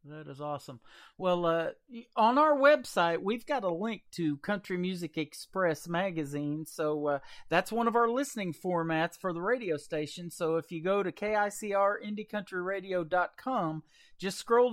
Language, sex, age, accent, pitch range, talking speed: English, male, 40-59, American, 155-215 Hz, 160 wpm